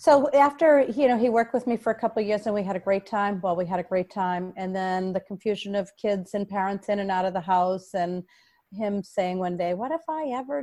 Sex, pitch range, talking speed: female, 180-215 Hz, 270 wpm